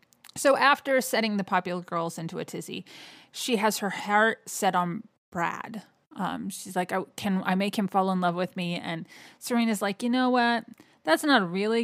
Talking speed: 195 wpm